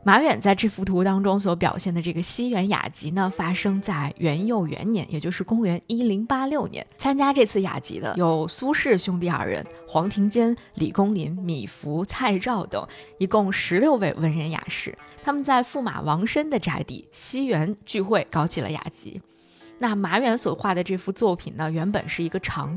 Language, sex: Chinese, female